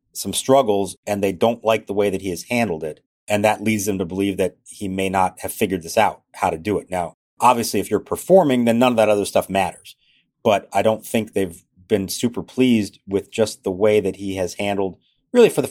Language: English